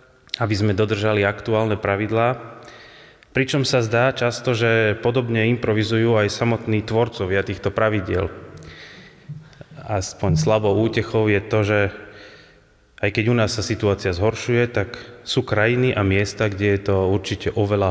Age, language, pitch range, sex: 30-49, Slovak, 100-120 Hz, male